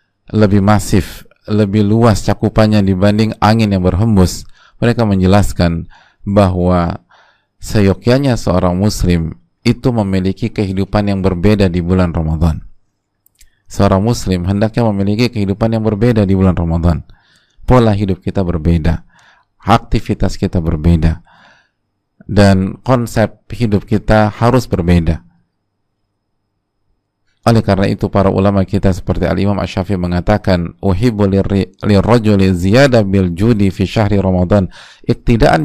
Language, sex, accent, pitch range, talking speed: Indonesian, male, native, 95-115 Hz, 115 wpm